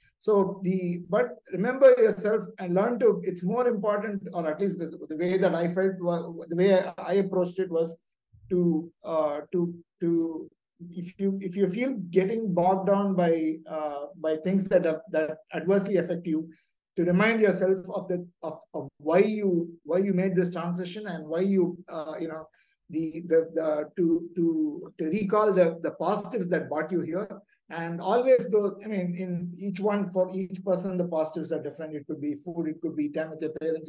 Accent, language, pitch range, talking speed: Indian, English, 165-195 Hz, 195 wpm